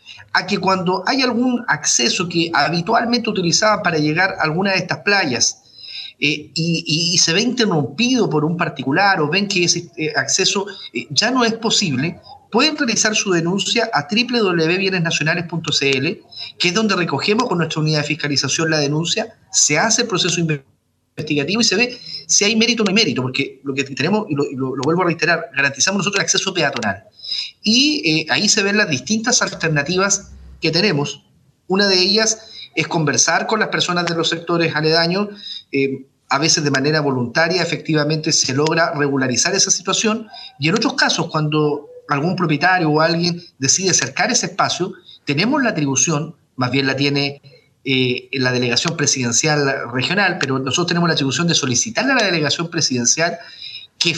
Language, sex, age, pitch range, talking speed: Spanish, male, 30-49, 145-200 Hz, 175 wpm